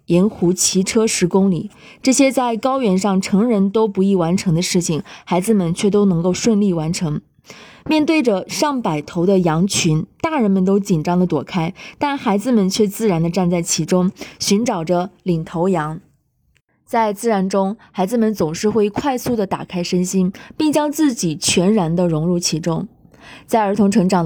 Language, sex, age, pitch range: Chinese, female, 20-39, 175-220 Hz